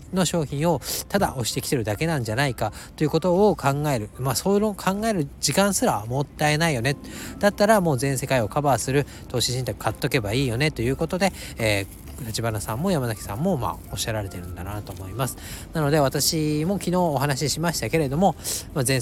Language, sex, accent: Japanese, male, native